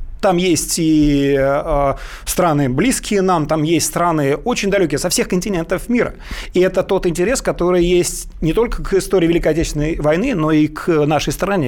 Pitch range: 150-195 Hz